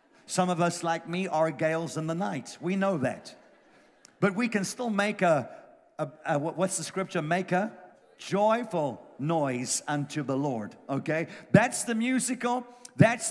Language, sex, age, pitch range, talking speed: English, male, 50-69, 150-205 Hz, 160 wpm